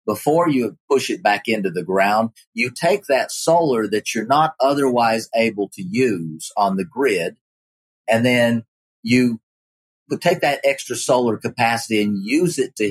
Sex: male